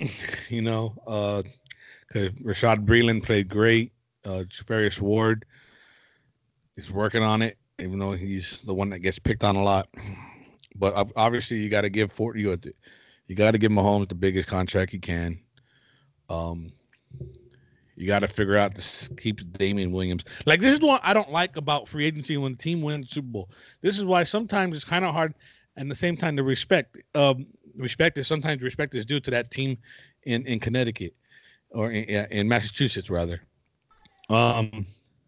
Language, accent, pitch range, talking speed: English, American, 105-150 Hz, 175 wpm